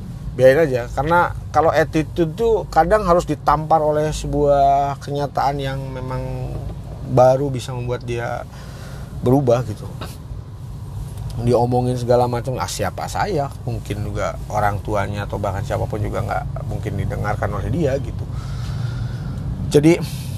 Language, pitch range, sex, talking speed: Indonesian, 115-145 Hz, male, 120 wpm